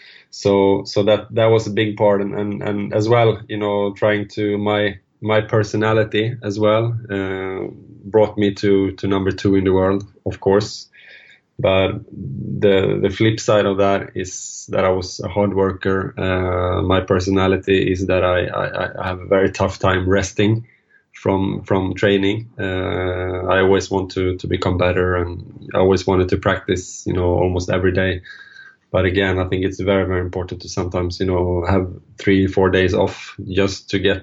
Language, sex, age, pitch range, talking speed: English, male, 20-39, 95-105 Hz, 180 wpm